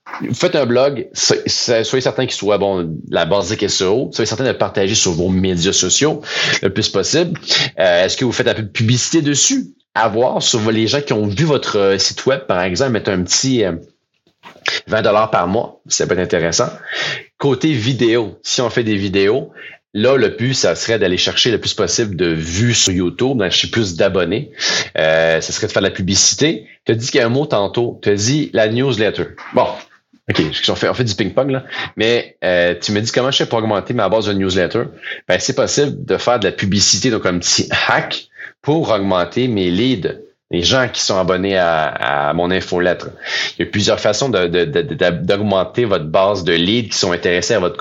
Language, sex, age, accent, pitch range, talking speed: French, male, 30-49, Canadian, 90-120 Hz, 220 wpm